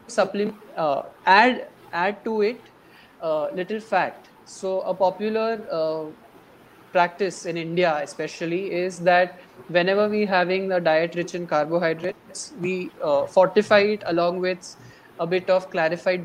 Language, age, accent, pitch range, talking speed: Hindi, 30-49, native, 170-200 Hz, 140 wpm